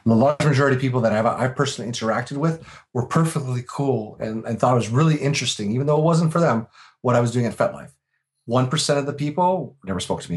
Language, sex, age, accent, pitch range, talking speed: English, male, 40-59, American, 100-135 Hz, 230 wpm